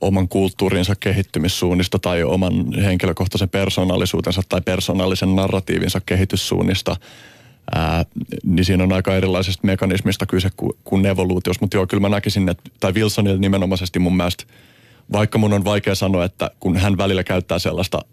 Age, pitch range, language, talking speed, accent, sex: 30-49, 90-100 Hz, Finnish, 145 wpm, native, male